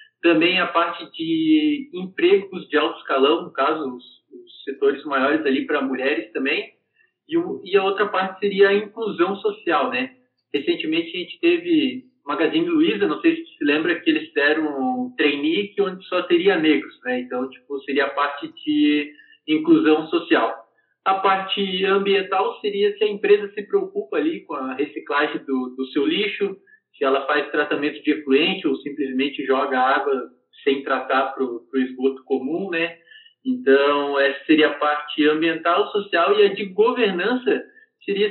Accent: Brazilian